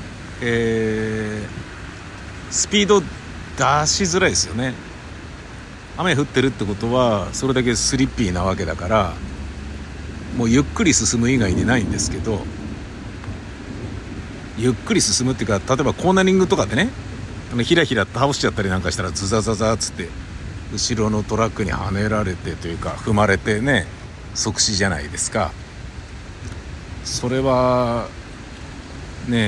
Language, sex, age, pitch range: Japanese, male, 60-79, 90-125 Hz